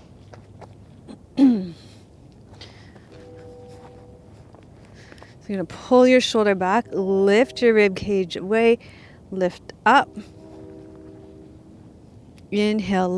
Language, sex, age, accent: English, female, 40-59, American